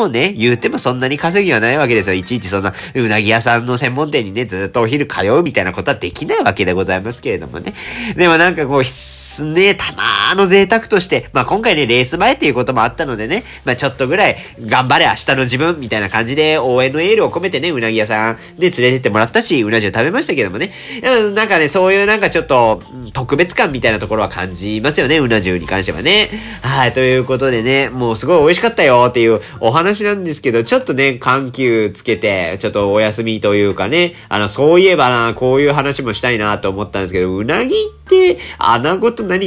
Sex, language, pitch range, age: male, Japanese, 110-155 Hz, 40-59